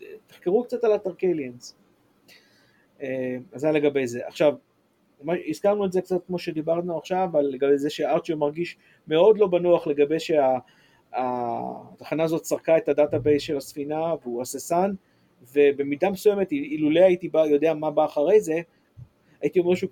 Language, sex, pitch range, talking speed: Hebrew, male, 140-175 Hz, 145 wpm